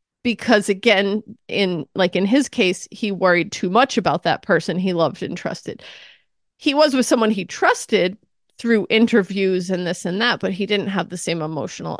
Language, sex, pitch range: English, female, 180-225 Hz